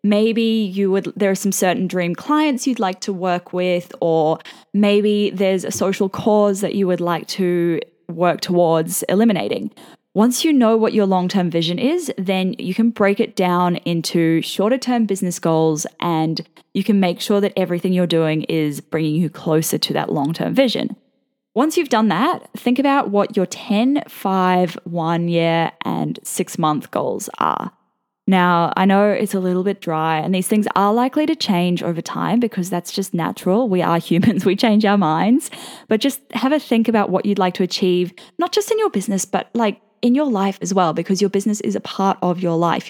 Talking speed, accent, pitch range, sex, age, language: 195 wpm, Australian, 180-225 Hz, female, 10-29, English